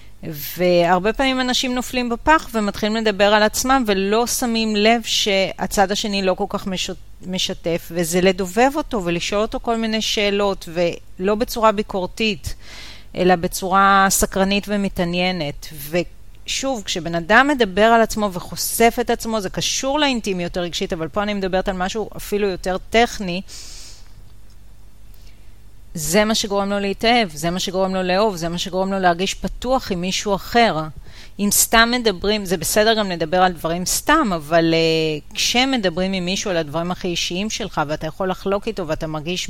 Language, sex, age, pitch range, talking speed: Hebrew, female, 30-49, 160-210 Hz, 150 wpm